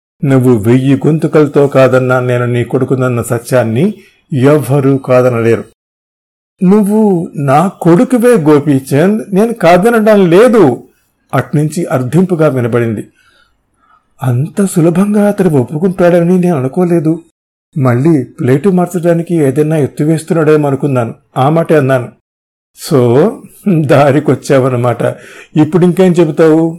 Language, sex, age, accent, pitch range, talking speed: Telugu, male, 50-69, native, 125-165 Hz, 85 wpm